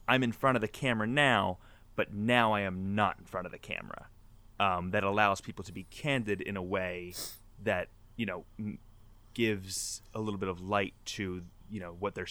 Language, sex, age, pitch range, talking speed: English, male, 20-39, 95-110 Hz, 200 wpm